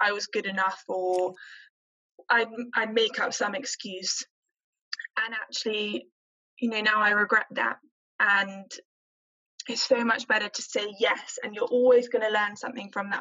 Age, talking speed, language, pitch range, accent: 10-29, 165 wpm, English, 210-255 Hz, British